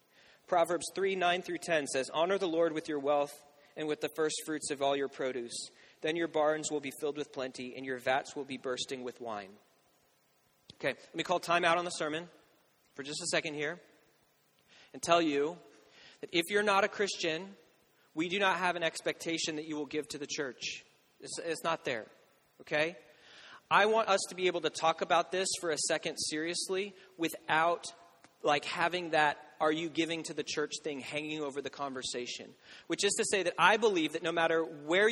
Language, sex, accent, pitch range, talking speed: English, male, American, 150-180 Hz, 200 wpm